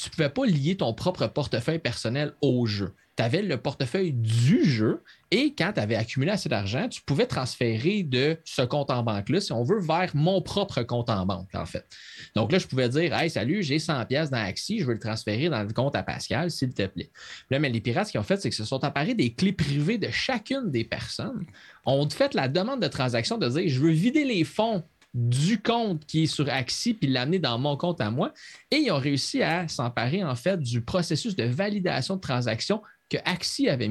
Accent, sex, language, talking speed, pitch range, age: Canadian, male, French, 235 wpm, 115-170 Hz, 30-49